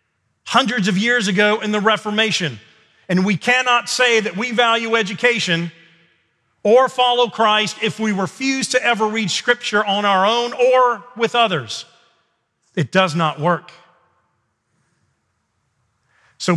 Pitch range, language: 180-240 Hz, English